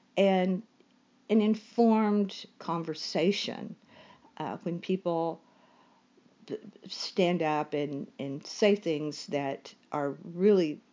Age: 50-69